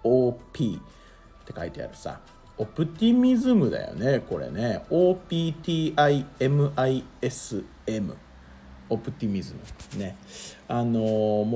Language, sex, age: Japanese, male, 40-59